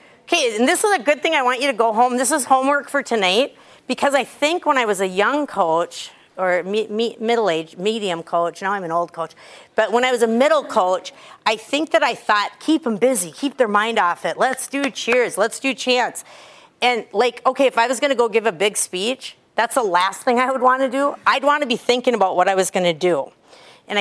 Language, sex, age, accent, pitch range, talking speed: English, female, 50-69, American, 190-255 Hz, 245 wpm